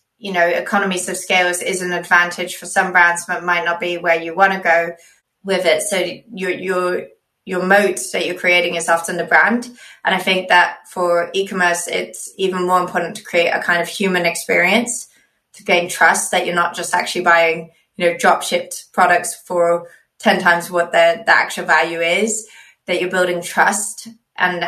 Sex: female